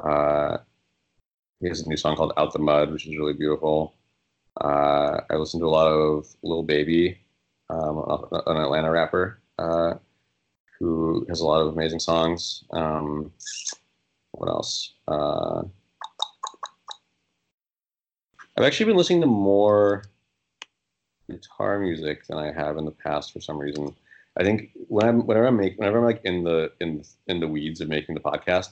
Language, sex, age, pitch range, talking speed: English, male, 30-49, 75-90 Hz, 160 wpm